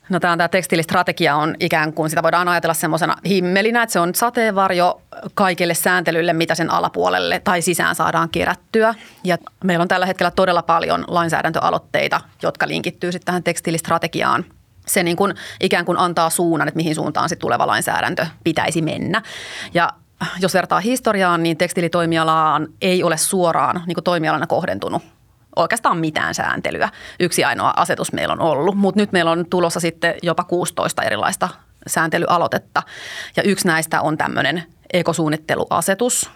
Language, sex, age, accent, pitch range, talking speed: Finnish, female, 30-49, native, 165-190 Hz, 150 wpm